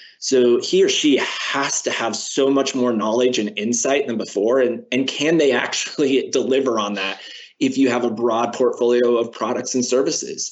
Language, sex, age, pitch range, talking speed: English, male, 20-39, 115-140 Hz, 190 wpm